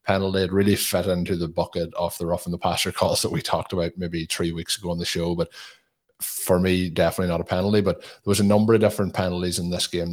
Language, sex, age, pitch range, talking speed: English, male, 20-39, 85-100 Hz, 255 wpm